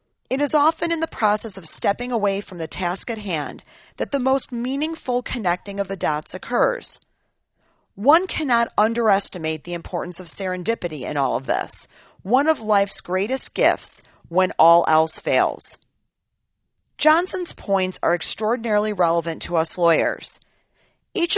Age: 40-59